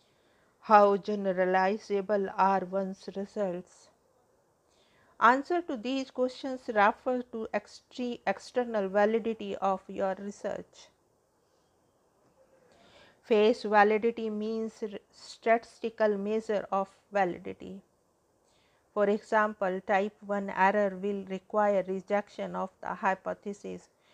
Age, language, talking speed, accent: 50-69, English, 90 wpm, Indian